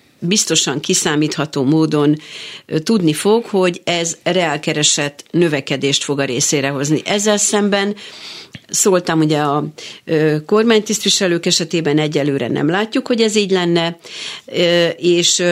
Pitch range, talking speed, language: 150-185 Hz, 110 wpm, Hungarian